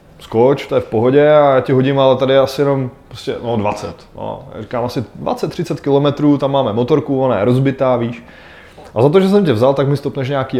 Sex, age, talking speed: male, 20-39, 220 wpm